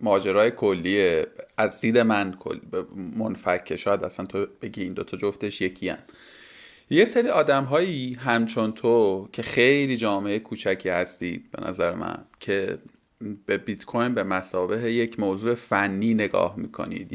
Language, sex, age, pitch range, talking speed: Persian, male, 30-49, 100-125 Hz, 150 wpm